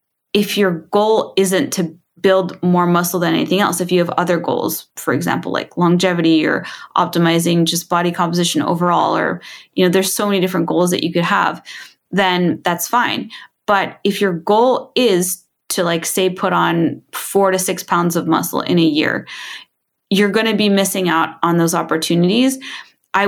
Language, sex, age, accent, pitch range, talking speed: English, female, 20-39, American, 170-200 Hz, 180 wpm